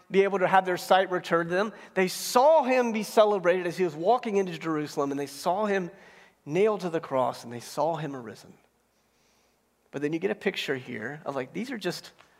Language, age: English, 40-59